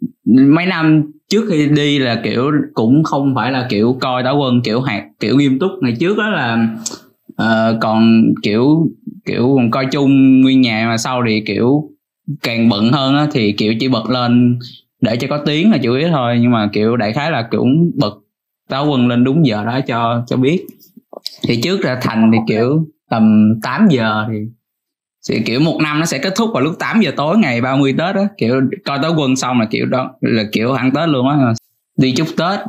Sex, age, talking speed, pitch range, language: male, 20-39, 210 wpm, 115-150 Hz, Vietnamese